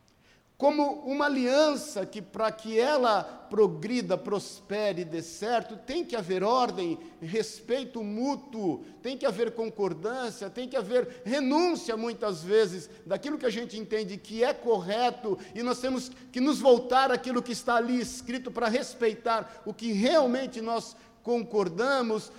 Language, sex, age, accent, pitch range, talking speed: Portuguese, male, 50-69, Brazilian, 210-265 Hz, 140 wpm